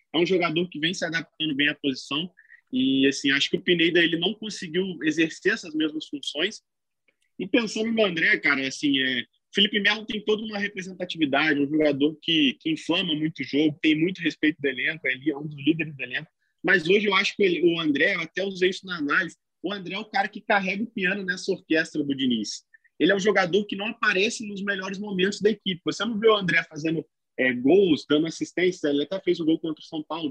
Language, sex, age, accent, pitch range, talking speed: Portuguese, male, 20-39, Brazilian, 155-205 Hz, 230 wpm